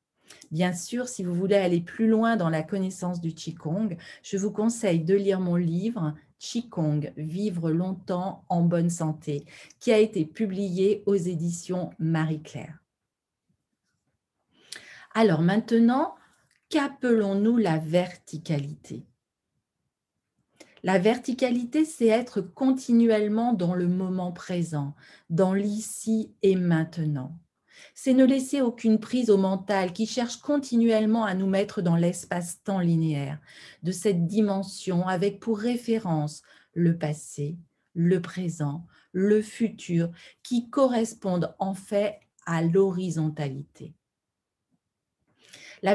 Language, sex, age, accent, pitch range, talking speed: French, female, 40-59, French, 165-220 Hz, 115 wpm